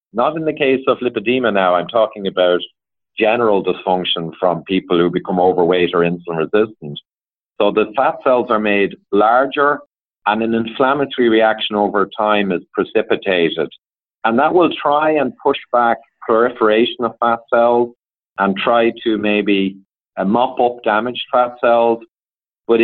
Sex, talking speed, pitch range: male, 145 wpm, 95-120 Hz